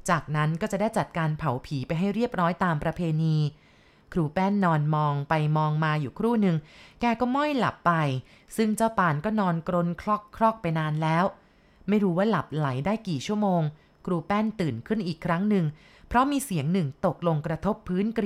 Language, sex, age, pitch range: Thai, female, 20-39, 155-200 Hz